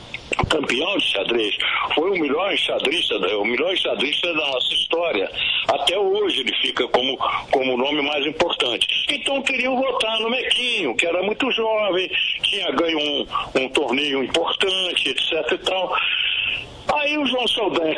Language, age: Portuguese, 60-79